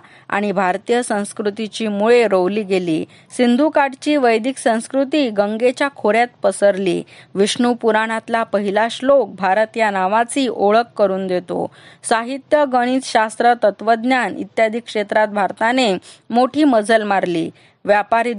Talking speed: 40 wpm